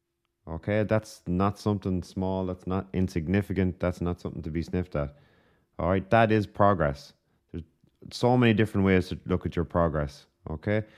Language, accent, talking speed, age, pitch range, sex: English, Irish, 170 wpm, 30-49, 85-105 Hz, male